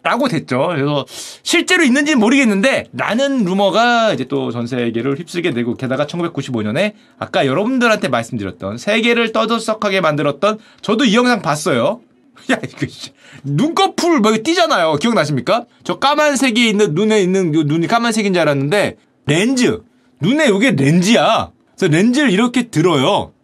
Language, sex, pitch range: Korean, male, 150-245 Hz